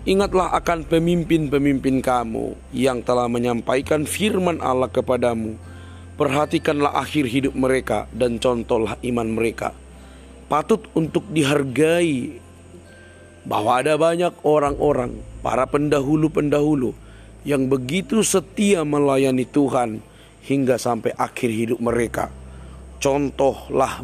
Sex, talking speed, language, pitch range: male, 95 wpm, Indonesian, 110-145 Hz